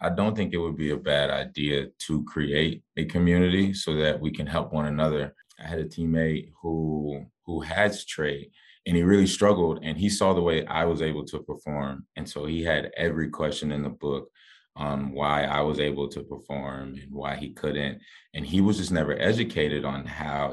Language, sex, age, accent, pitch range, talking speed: English, male, 20-39, American, 70-80 Hz, 205 wpm